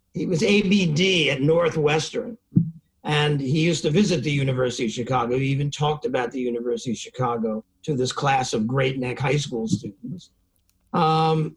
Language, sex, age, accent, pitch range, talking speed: English, male, 50-69, American, 125-170 Hz, 165 wpm